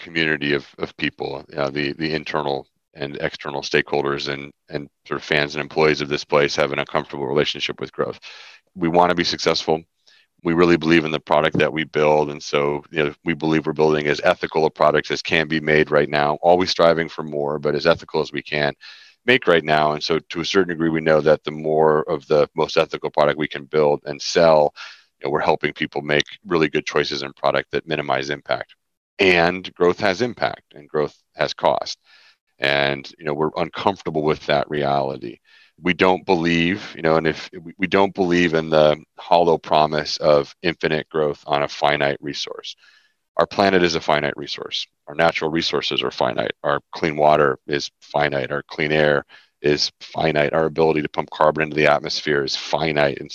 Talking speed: 200 wpm